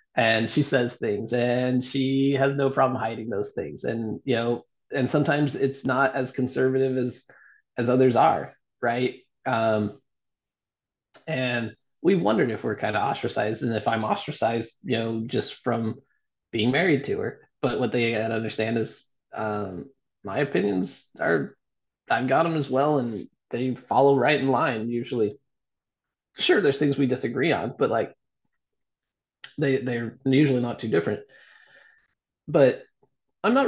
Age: 20-39